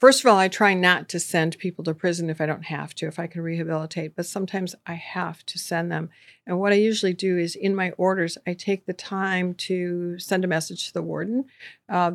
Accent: American